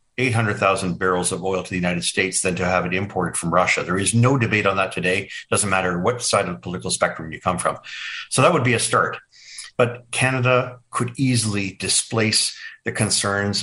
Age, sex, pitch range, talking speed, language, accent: 50-69, male, 95-120 Hz, 215 wpm, English, American